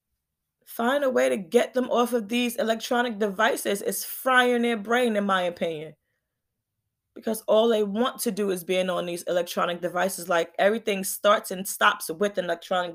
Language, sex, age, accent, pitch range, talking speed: English, female, 20-39, American, 185-230 Hz, 175 wpm